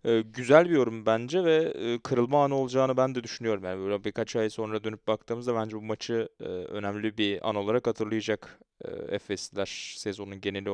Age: 30-49